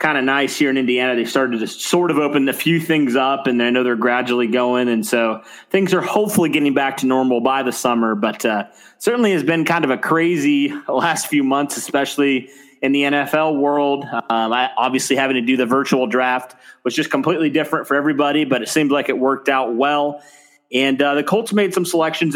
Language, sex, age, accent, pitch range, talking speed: English, male, 30-49, American, 130-155 Hz, 215 wpm